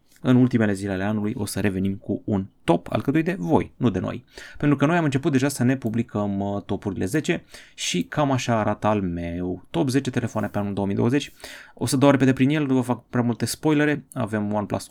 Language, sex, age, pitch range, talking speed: Romanian, male, 20-39, 105-135 Hz, 220 wpm